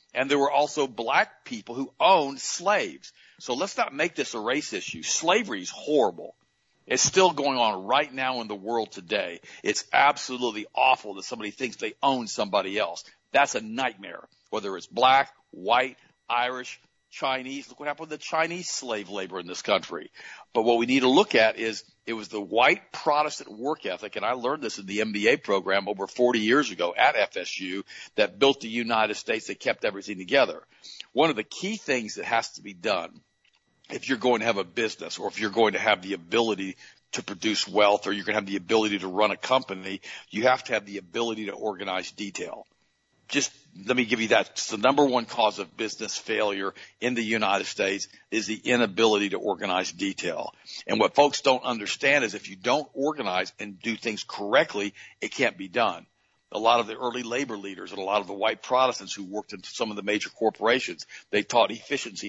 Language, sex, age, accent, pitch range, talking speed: English, male, 50-69, American, 100-125 Hz, 205 wpm